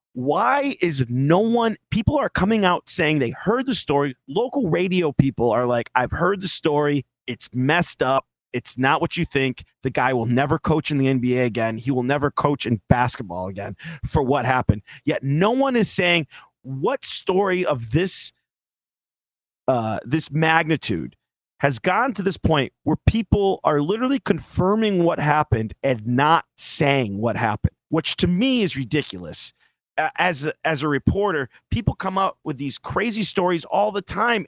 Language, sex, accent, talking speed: English, male, American, 170 wpm